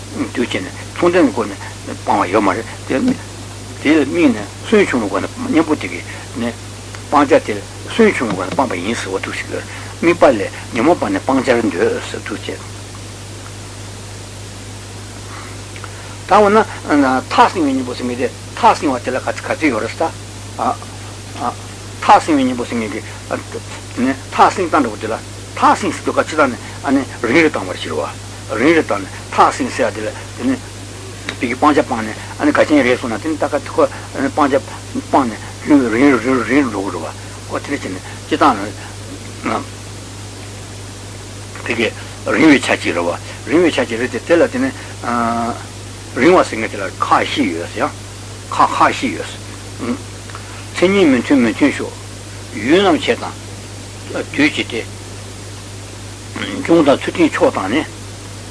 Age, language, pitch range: 60-79, Italian, 100-120 Hz